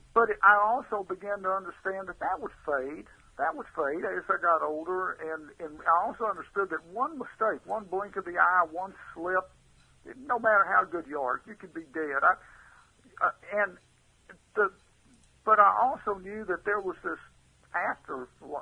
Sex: male